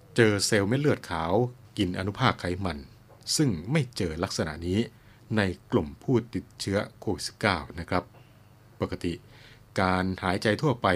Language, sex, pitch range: Thai, male, 95-120 Hz